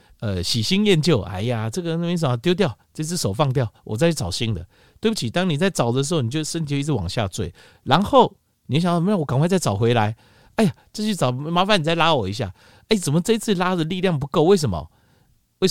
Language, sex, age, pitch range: Chinese, male, 50-69, 100-155 Hz